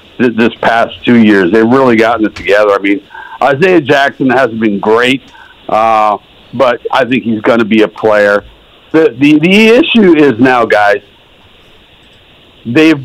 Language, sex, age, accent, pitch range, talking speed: English, male, 60-79, American, 110-145 Hz, 155 wpm